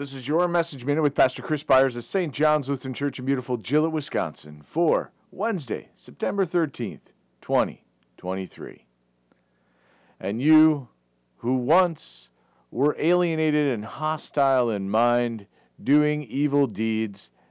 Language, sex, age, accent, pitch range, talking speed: English, male, 40-59, American, 95-140 Hz, 125 wpm